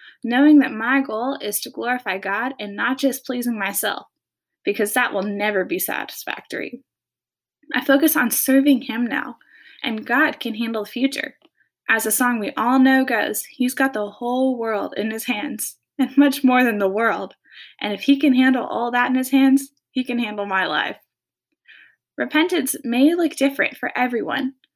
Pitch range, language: 225-275 Hz, English